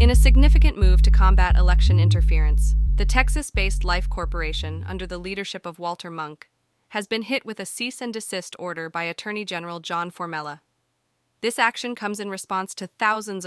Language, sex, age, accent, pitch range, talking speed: English, female, 20-39, American, 175-220 Hz, 165 wpm